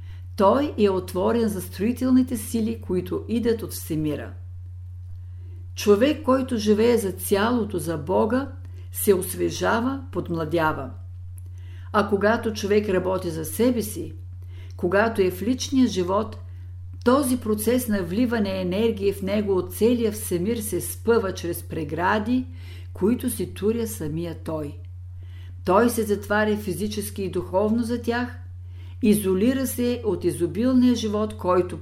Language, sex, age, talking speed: Bulgarian, female, 50-69, 125 wpm